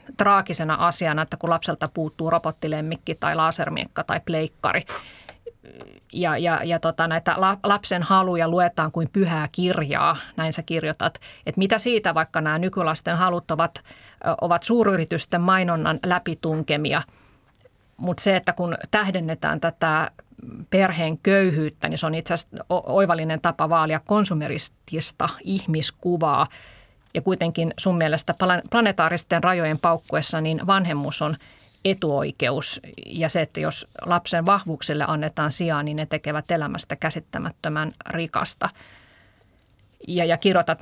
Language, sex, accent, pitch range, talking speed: Finnish, female, native, 155-180 Hz, 125 wpm